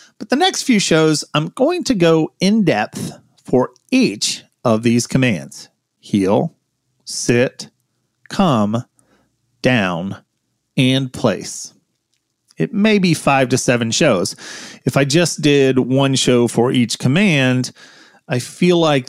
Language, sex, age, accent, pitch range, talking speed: English, male, 40-59, American, 115-155 Hz, 125 wpm